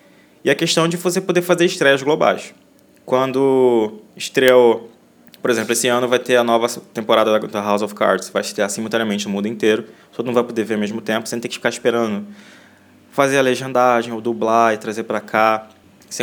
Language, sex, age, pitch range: Portuguese, male, 20-39, 110-135 Hz